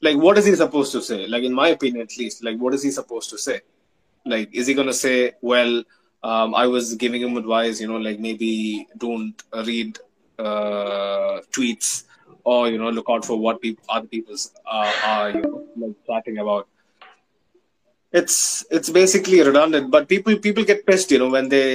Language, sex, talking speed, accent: English, male, 195 wpm, Indian